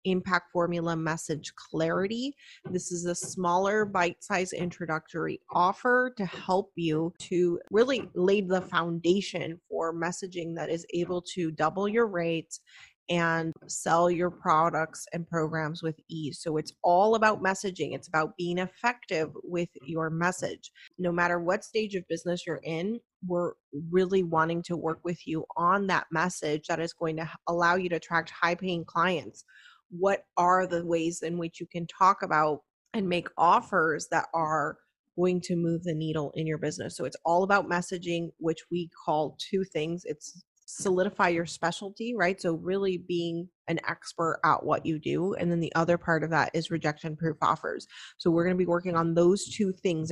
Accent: American